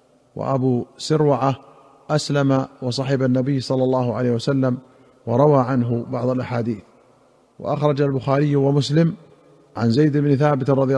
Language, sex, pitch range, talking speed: Arabic, male, 125-140 Hz, 115 wpm